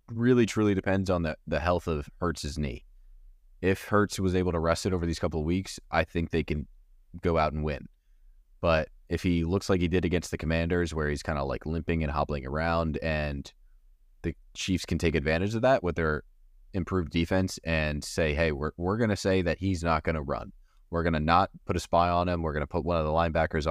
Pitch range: 75-90 Hz